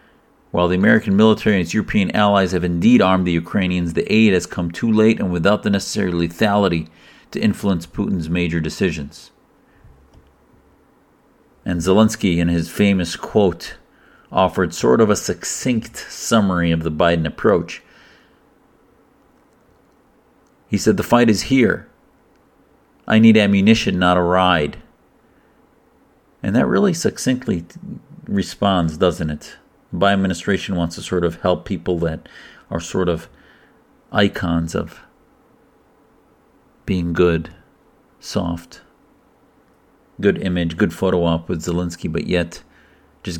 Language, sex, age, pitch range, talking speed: English, male, 50-69, 85-100 Hz, 125 wpm